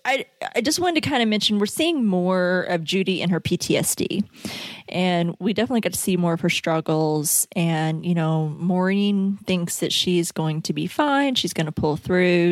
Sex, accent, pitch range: female, American, 160-190 Hz